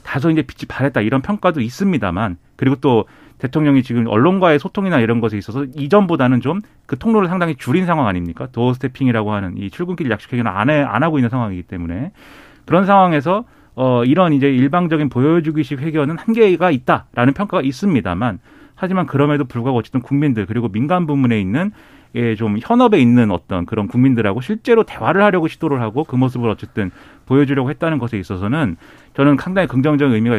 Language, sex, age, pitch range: Korean, male, 30-49, 120-170 Hz